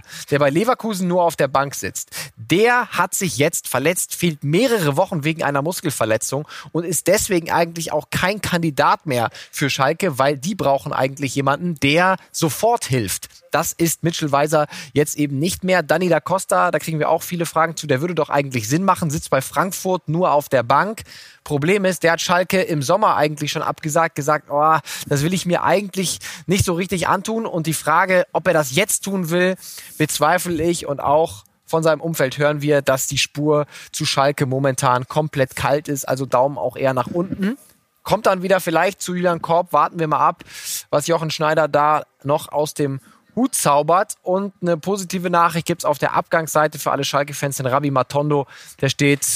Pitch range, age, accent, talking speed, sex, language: 140-175 Hz, 20-39, German, 195 wpm, male, German